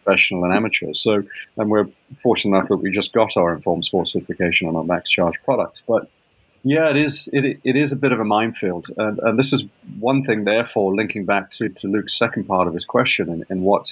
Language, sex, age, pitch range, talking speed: English, male, 30-49, 95-125 Hz, 235 wpm